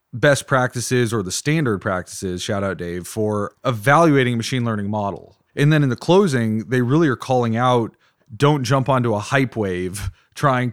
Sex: male